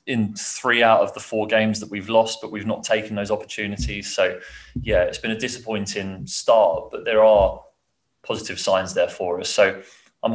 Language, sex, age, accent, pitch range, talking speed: English, male, 30-49, British, 95-110 Hz, 190 wpm